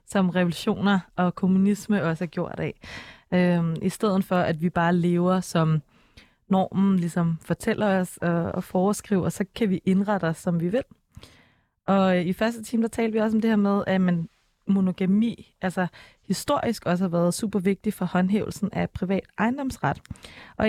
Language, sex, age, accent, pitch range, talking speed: Danish, female, 20-39, native, 175-205 Hz, 160 wpm